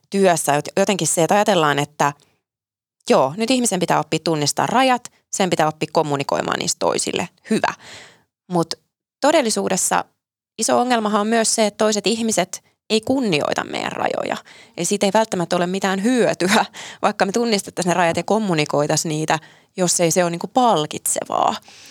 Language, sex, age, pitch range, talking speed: Finnish, female, 20-39, 165-220 Hz, 150 wpm